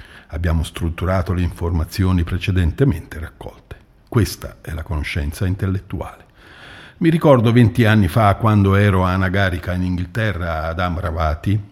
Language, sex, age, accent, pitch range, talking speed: Italian, male, 50-69, native, 90-120 Hz, 125 wpm